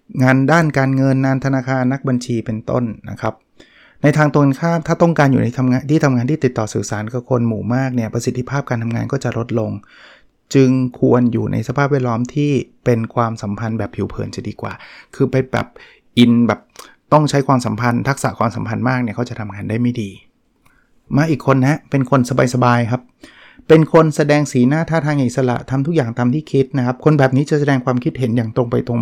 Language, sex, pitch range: Thai, male, 120-140 Hz